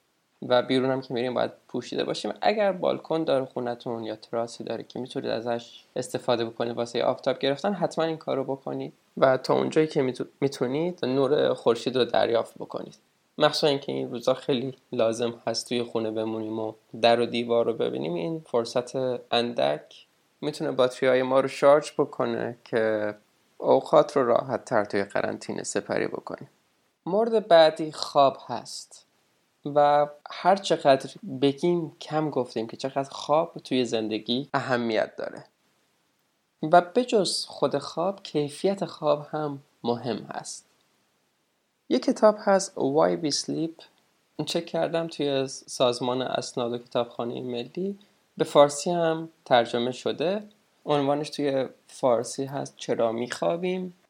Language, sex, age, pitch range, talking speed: Persian, male, 20-39, 120-160 Hz, 135 wpm